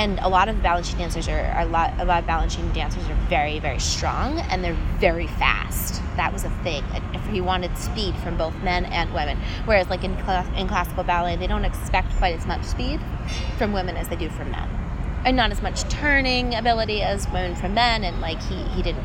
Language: English